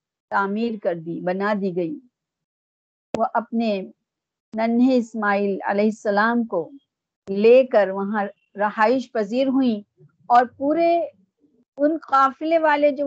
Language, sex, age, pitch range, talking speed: Urdu, female, 50-69, 200-265 Hz, 115 wpm